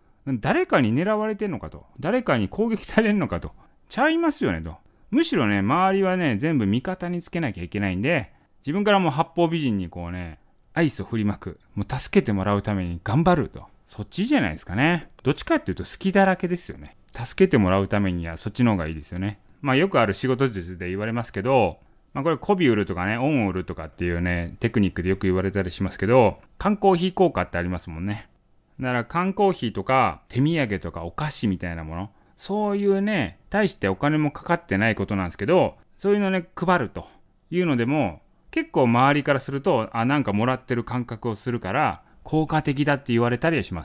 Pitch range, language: 100-165 Hz, Japanese